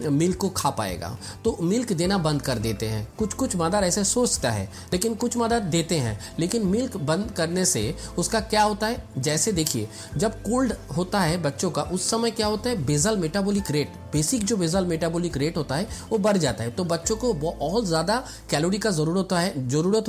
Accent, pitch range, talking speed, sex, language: native, 155-220 Hz, 205 wpm, male, Hindi